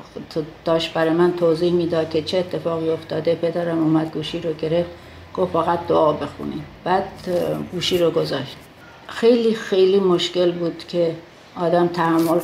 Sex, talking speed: female, 140 wpm